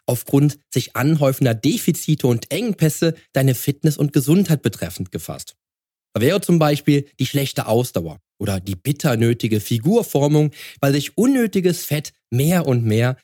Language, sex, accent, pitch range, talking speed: German, male, German, 115-155 Hz, 140 wpm